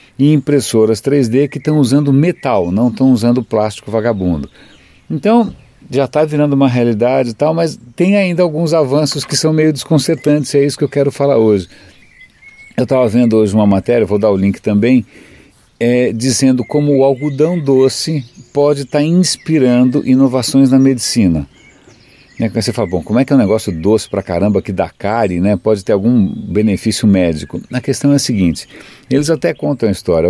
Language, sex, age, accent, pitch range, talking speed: Portuguese, male, 50-69, Brazilian, 110-145 Hz, 175 wpm